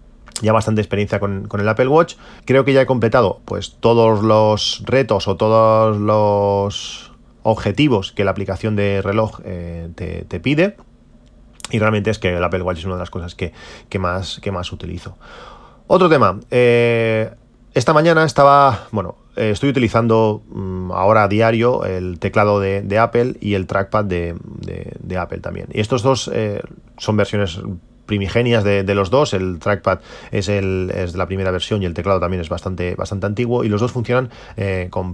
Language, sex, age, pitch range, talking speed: Spanish, male, 30-49, 95-115 Hz, 170 wpm